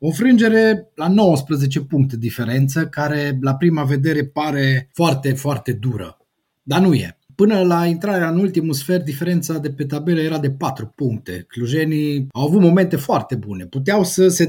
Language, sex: Romanian, male